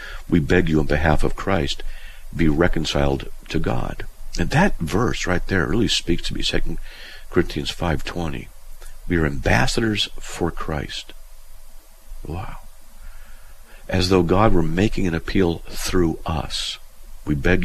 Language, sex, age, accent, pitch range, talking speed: English, male, 50-69, American, 75-95 Hz, 135 wpm